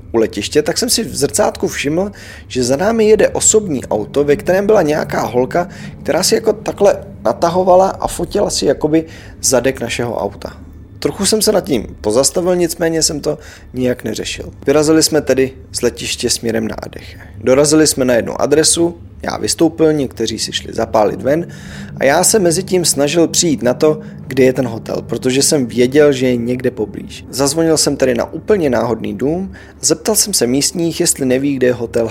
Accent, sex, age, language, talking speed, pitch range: native, male, 20-39, Czech, 185 wpm, 120-160 Hz